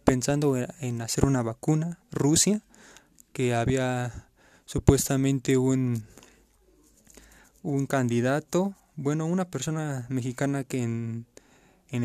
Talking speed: 95 wpm